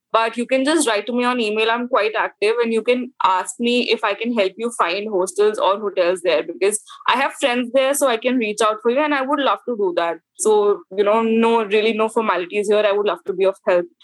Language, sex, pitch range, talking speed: English, female, 200-245 Hz, 260 wpm